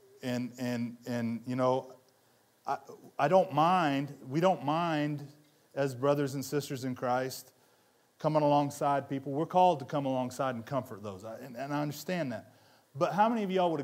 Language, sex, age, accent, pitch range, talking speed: English, male, 30-49, American, 130-185 Hz, 175 wpm